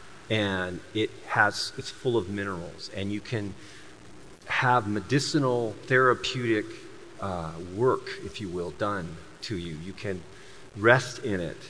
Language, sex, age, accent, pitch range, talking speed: English, male, 40-59, American, 100-130 Hz, 135 wpm